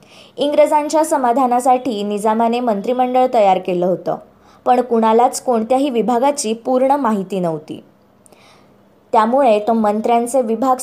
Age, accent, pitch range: 20-39, native, 200-255 Hz